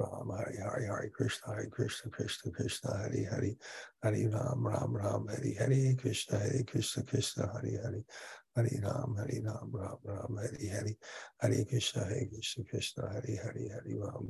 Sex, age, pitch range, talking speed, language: male, 60-79, 105-125 Hz, 145 wpm, English